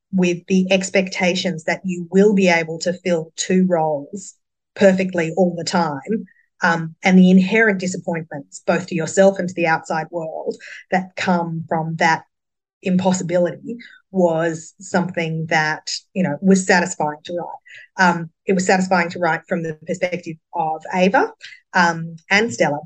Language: English